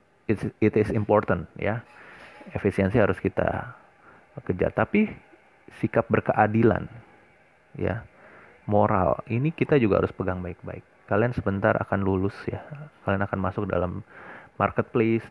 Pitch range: 95-110 Hz